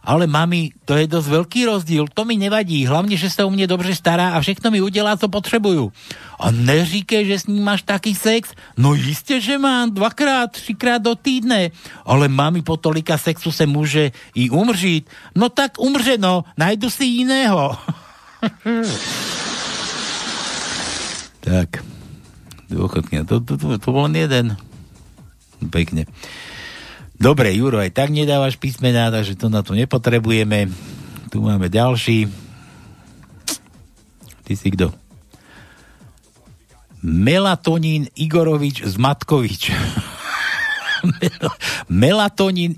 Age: 60-79